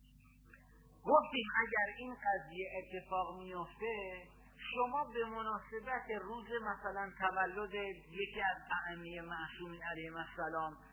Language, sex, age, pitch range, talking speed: Persian, male, 50-69, 180-235 Hz, 100 wpm